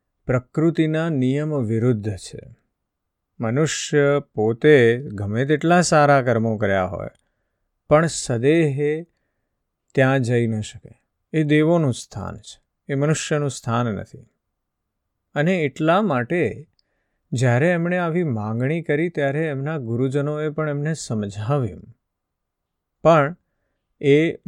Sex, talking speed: male, 70 wpm